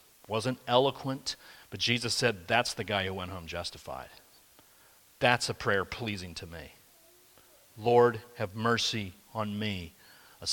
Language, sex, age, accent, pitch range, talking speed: English, male, 40-59, American, 105-135 Hz, 135 wpm